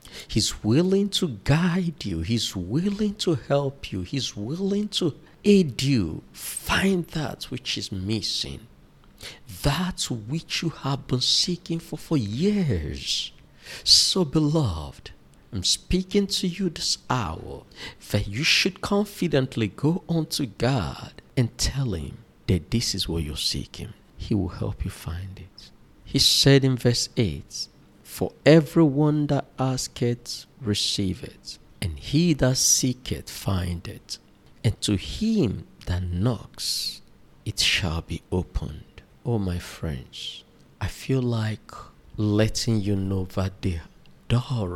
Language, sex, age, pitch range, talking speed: English, male, 50-69, 95-150 Hz, 135 wpm